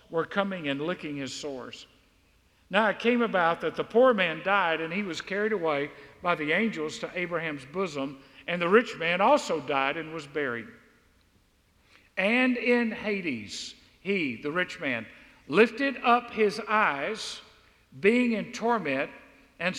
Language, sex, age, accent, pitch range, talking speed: English, male, 50-69, American, 150-215 Hz, 150 wpm